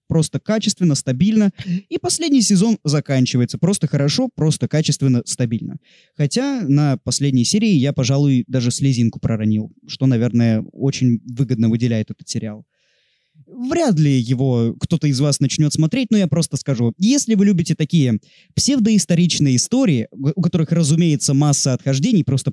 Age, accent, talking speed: 20-39, native, 140 wpm